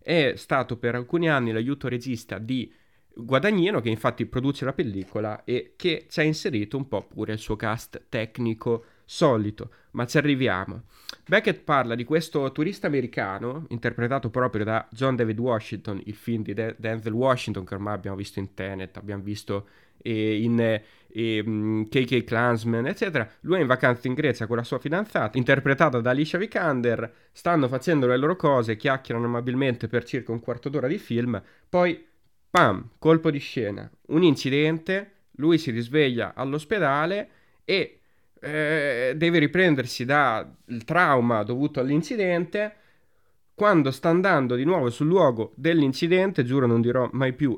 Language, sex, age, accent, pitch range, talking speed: Italian, male, 20-39, native, 115-160 Hz, 155 wpm